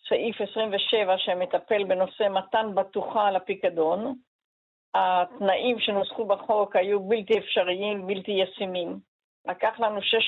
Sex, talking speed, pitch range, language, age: female, 110 wpm, 190-245 Hz, Hebrew, 50-69